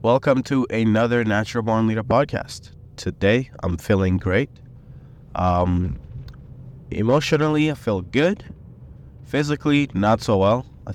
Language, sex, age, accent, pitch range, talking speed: English, male, 20-39, American, 95-125 Hz, 115 wpm